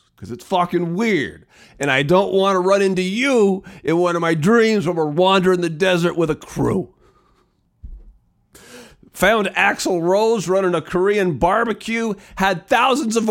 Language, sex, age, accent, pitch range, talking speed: English, male, 40-59, American, 160-225 Hz, 160 wpm